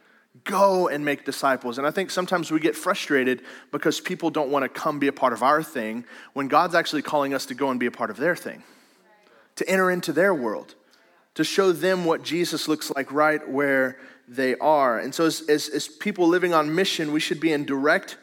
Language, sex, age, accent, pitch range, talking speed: English, male, 30-49, American, 140-185 Hz, 220 wpm